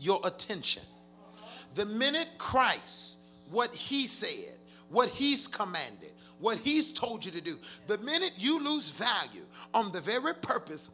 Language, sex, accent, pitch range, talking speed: English, male, American, 195-255 Hz, 145 wpm